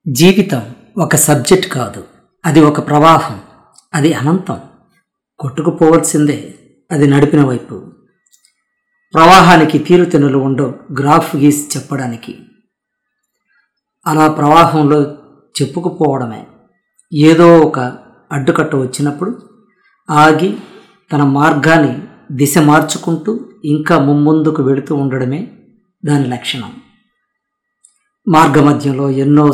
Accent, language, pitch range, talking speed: native, Telugu, 140-175 Hz, 80 wpm